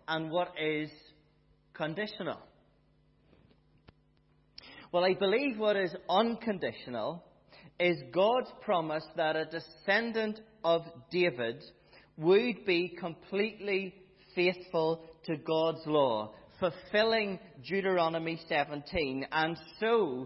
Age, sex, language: 40-59, male, English